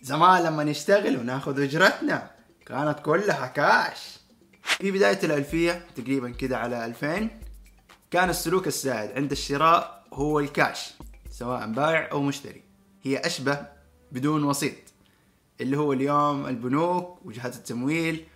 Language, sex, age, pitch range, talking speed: Arabic, male, 20-39, 130-170 Hz, 120 wpm